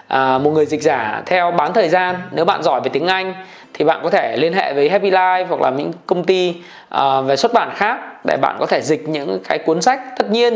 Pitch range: 155-200 Hz